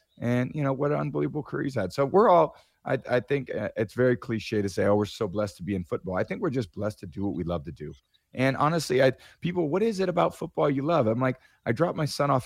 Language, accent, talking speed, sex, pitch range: English, American, 280 wpm, male, 105-140 Hz